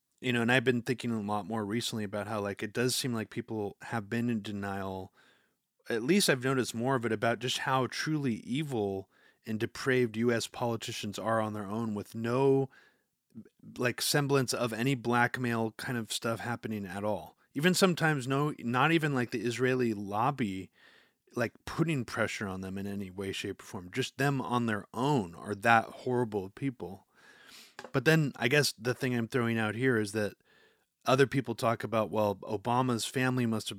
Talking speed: 185 wpm